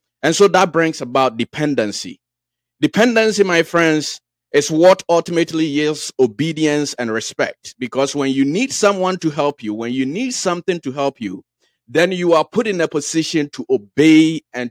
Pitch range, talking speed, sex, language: 120-170 Hz, 165 wpm, male, English